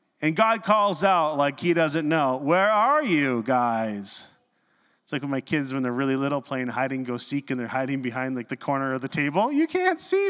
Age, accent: 30-49, American